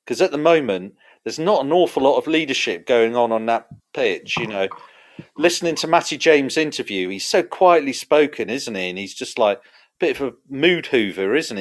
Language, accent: English, British